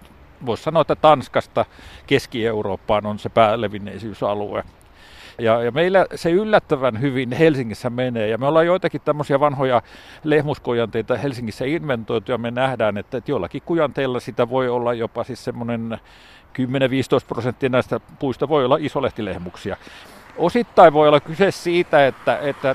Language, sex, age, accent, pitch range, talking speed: Finnish, male, 50-69, native, 115-140 Hz, 130 wpm